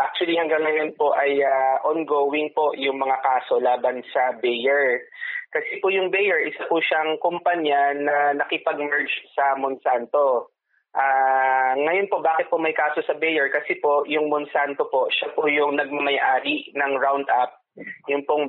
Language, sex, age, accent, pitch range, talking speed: Filipino, male, 20-39, native, 135-160 Hz, 155 wpm